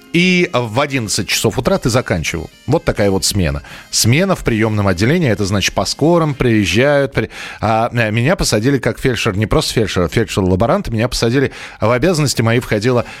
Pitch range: 110-155 Hz